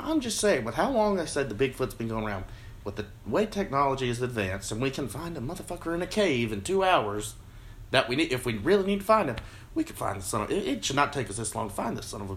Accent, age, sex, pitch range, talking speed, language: American, 30-49, male, 110-180 Hz, 290 wpm, English